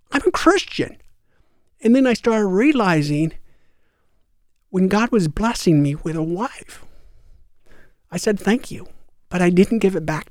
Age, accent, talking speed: 60-79, American, 150 wpm